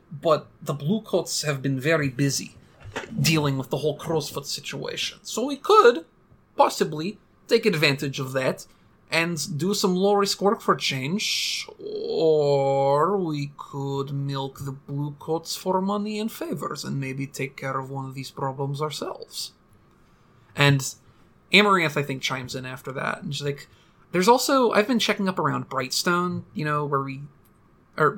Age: 30-49